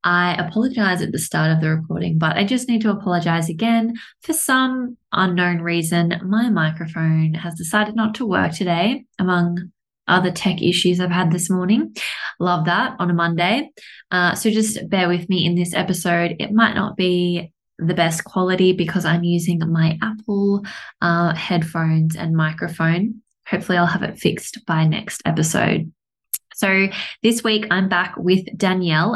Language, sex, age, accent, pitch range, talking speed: English, female, 20-39, Australian, 170-200 Hz, 165 wpm